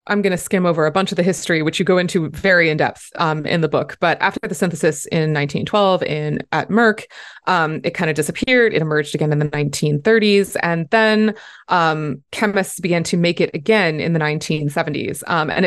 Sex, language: female, English